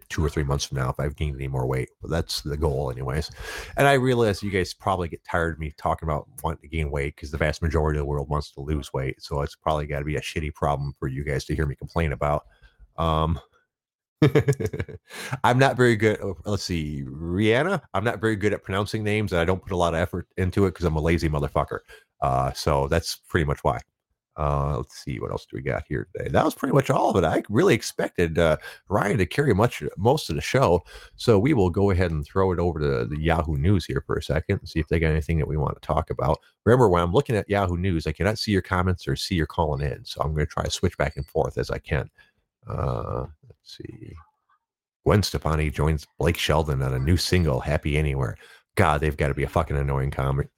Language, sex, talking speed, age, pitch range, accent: English, male, 245 wpm, 30-49, 75-95 Hz, American